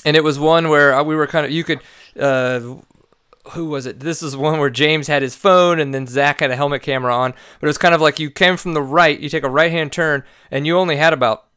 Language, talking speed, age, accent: English, 275 wpm, 30-49, American